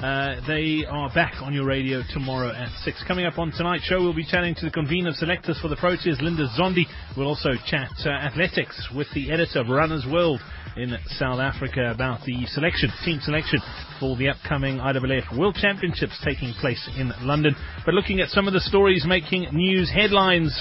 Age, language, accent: 30-49, English, British